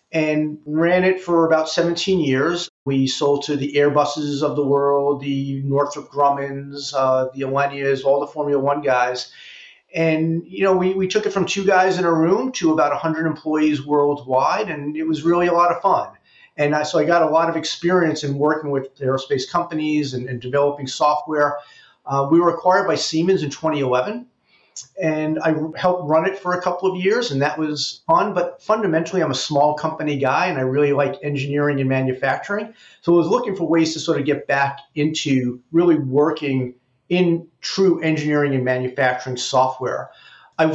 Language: English